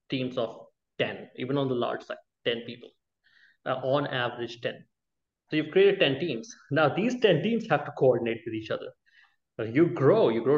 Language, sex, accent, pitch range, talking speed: English, male, Indian, 125-200 Hz, 195 wpm